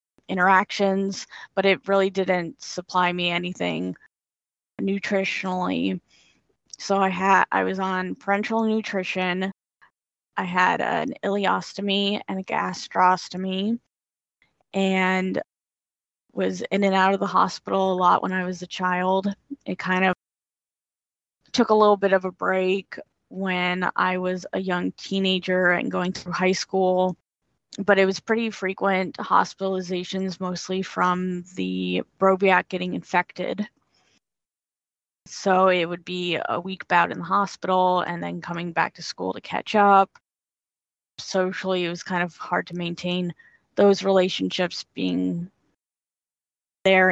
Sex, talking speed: female, 130 wpm